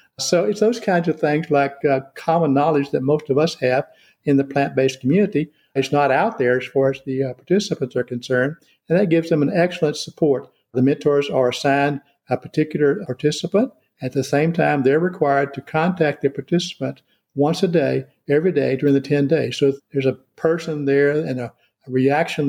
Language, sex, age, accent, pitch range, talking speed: English, male, 50-69, American, 135-155 Hz, 195 wpm